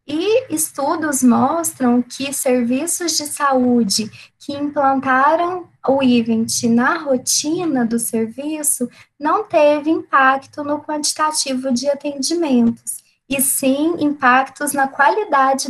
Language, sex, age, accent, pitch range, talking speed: Portuguese, female, 10-29, Brazilian, 250-295 Hz, 105 wpm